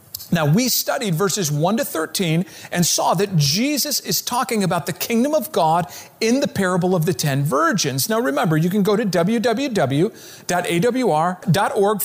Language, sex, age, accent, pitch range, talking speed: English, male, 40-59, American, 165-235 Hz, 160 wpm